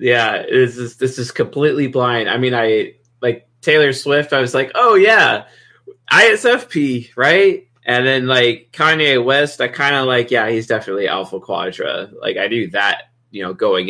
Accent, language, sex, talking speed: American, English, male, 180 wpm